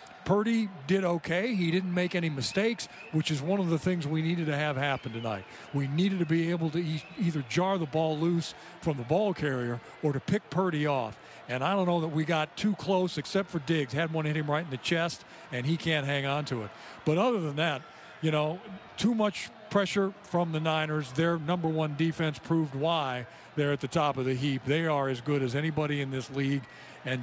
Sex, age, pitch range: male, 50-69, 140-175 Hz